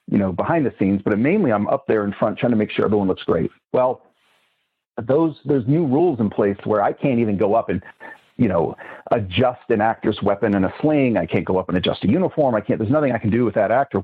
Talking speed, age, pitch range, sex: 260 wpm, 40-59, 105-130 Hz, male